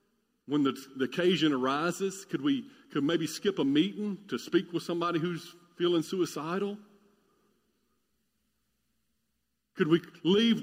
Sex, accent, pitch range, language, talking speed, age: male, American, 180-240 Hz, English, 125 wpm, 50-69